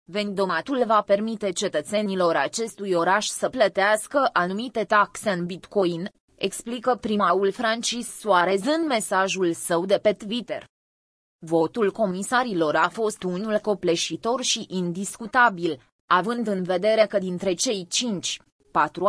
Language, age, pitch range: Romanian, 20-39, 185-230 Hz